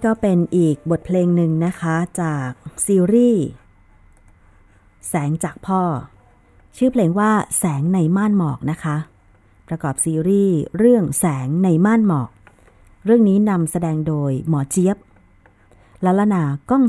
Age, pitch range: 30-49, 135-190 Hz